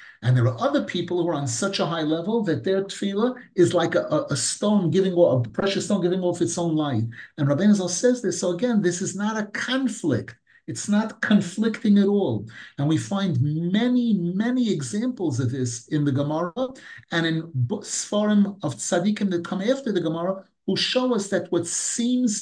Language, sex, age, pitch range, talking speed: English, male, 50-69, 155-210 Hz, 195 wpm